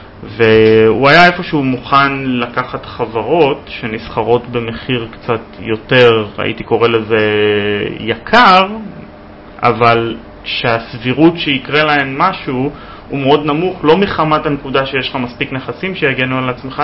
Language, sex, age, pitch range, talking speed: Hebrew, male, 30-49, 115-145 Hz, 115 wpm